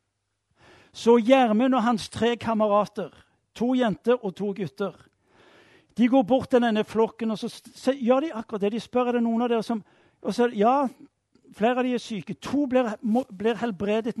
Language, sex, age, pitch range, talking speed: Danish, male, 60-79, 195-240 Hz, 175 wpm